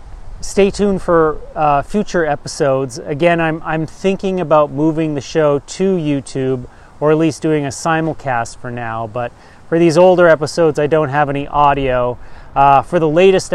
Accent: American